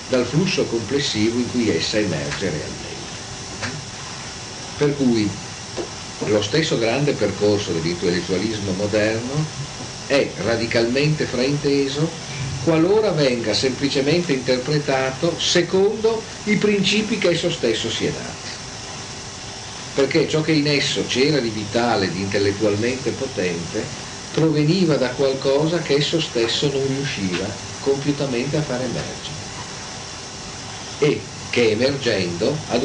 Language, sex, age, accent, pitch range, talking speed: Italian, male, 50-69, native, 115-150 Hz, 110 wpm